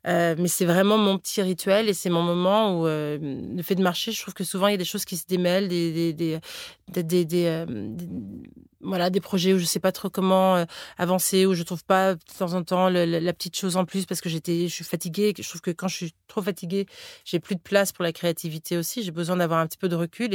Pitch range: 170-200 Hz